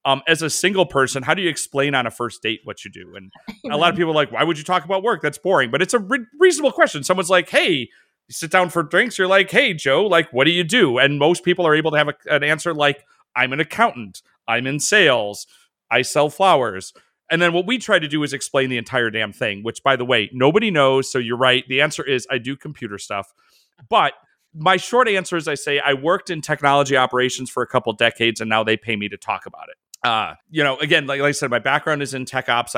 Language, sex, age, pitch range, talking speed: English, male, 30-49, 120-165 Hz, 260 wpm